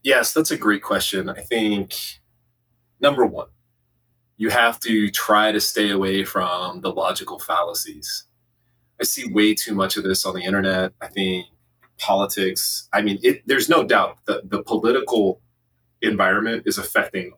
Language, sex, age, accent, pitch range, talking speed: English, male, 30-49, American, 100-120 Hz, 150 wpm